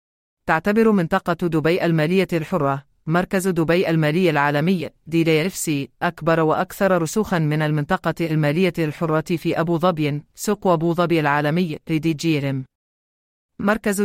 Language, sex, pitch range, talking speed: English, female, 150-185 Hz, 105 wpm